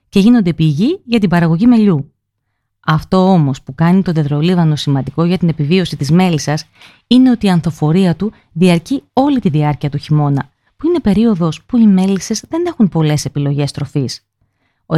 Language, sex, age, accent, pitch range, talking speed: Greek, female, 30-49, native, 145-200 Hz, 170 wpm